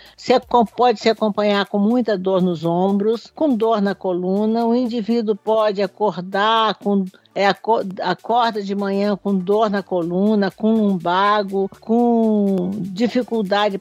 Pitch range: 195-235 Hz